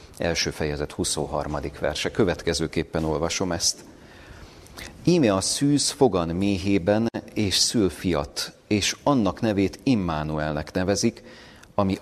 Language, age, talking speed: Hungarian, 40-59, 105 wpm